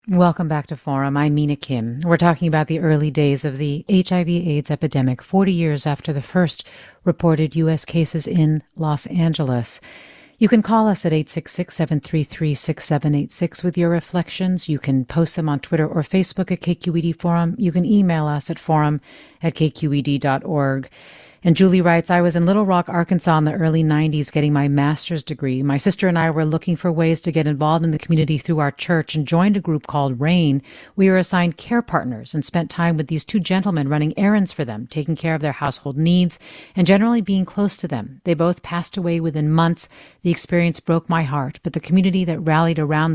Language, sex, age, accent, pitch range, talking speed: English, female, 40-59, American, 150-175 Hz, 195 wpm